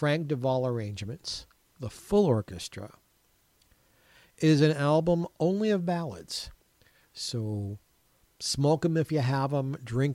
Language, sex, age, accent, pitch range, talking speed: English, male, 50-69, American, 115-155 Hz, 120 wpm